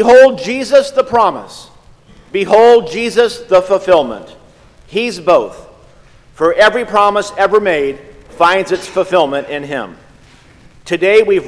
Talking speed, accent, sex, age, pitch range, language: 115 wpm, American, male, 50-69, 150-205 Hz, English